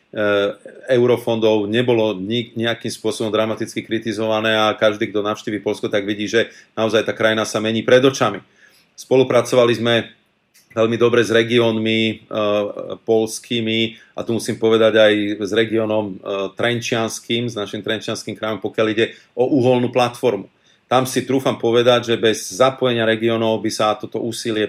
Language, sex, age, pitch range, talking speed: Slovak, male, 40-59, 110-120 Hz, 145 wpm